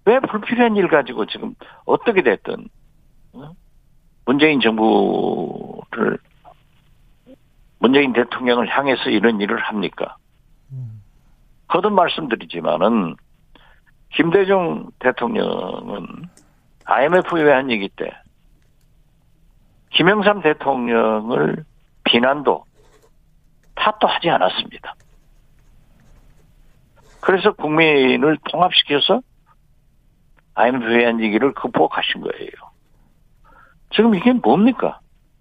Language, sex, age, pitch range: Korean, male, 50-69, 120-160 Hz